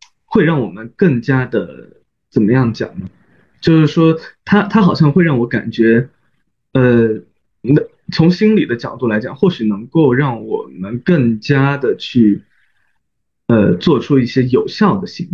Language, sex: Chinese, male